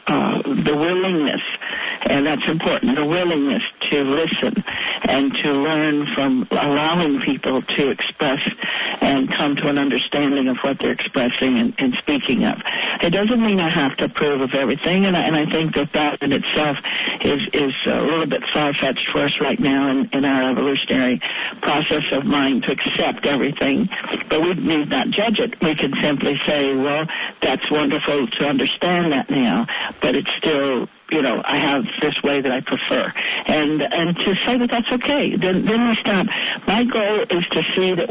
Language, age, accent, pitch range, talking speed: English, 60-79, American, 145-190 Hz, 180 wpm